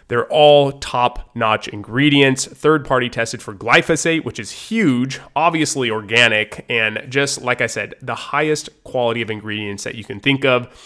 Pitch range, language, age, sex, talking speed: 110-135 Hz, English, 20-39, male, 155 wpm